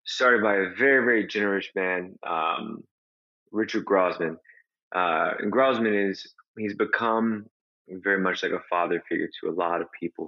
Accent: American